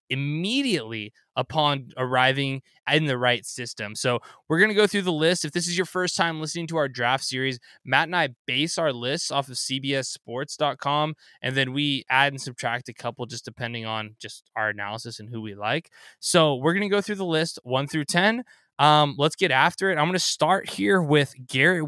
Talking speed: 210 wpm